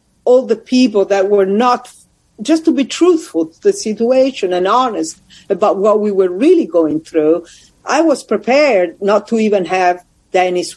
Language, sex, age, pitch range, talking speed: English, female, 50-69, 185-240 Hz, 165 wpm